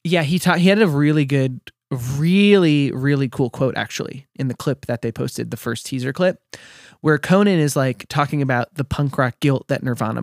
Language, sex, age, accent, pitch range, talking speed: English, male, 20-39, American, 130-165 Hz, 205 wpm